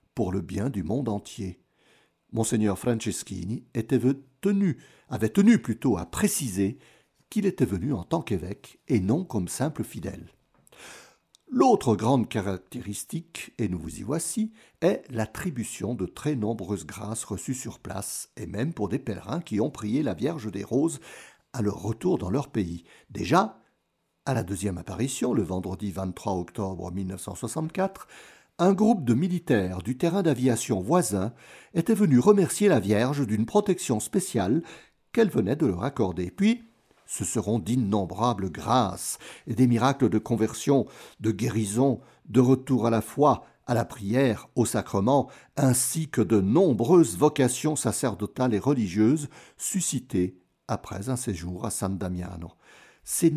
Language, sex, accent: French, male, French